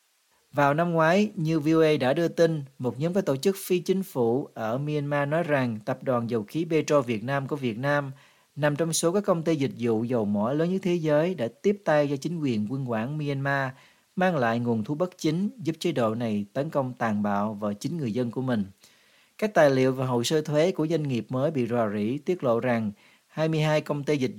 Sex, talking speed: male, 230 wpm